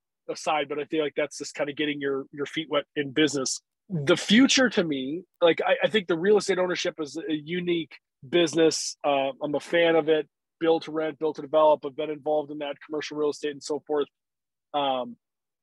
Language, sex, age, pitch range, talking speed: English, male, 20-39, 150-175 Hz, 215 wpm